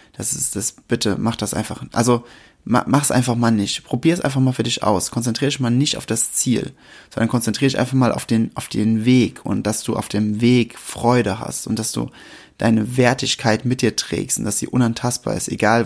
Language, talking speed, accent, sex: German, 225 wpm, German, male